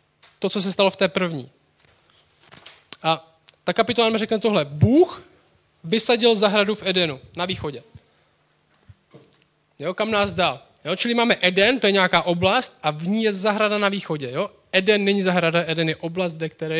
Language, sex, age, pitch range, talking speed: Czech, male, 20-39, 150-200 Hz, 170 wpm